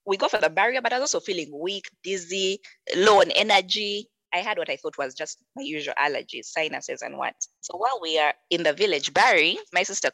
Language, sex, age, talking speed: English, female, 20-39, 225 wpm